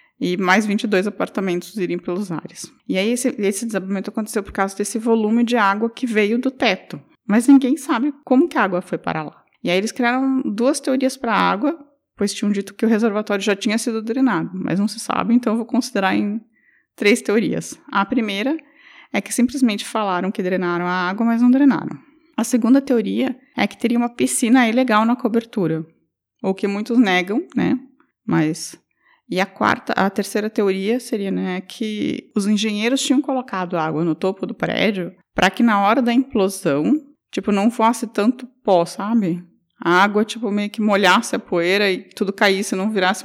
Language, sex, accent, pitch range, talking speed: Portuguese, female, Brazilian, 190-240 Hz, 190 wpm